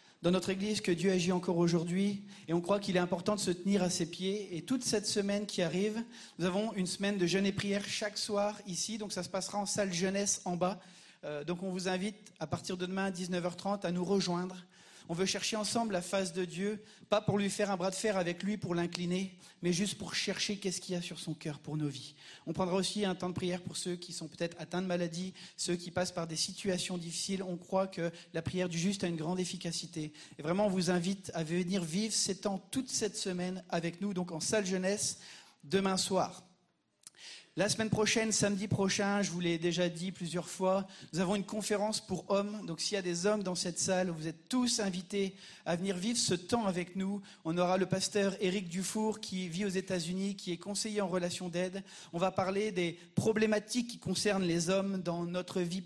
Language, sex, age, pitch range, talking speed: French, male, 40-59, 180-200 Hz, 230 wpm